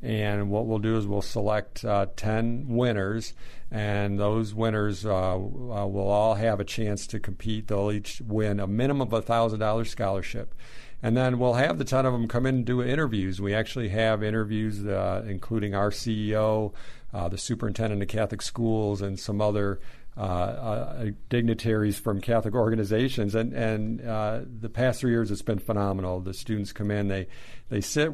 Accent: American